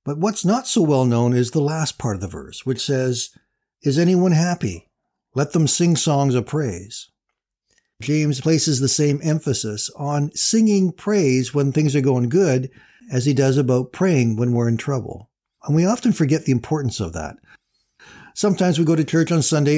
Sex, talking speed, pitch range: male, 185 wpm, 130-165 Hz